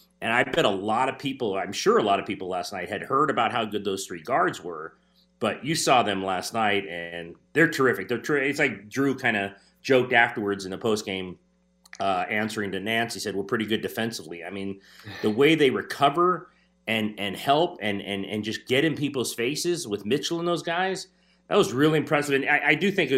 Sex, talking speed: male, 225 wpm